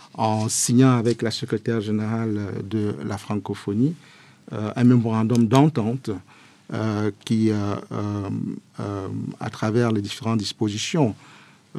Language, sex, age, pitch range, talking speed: French, male, 50-69, 105-125 Hz, 110 wpm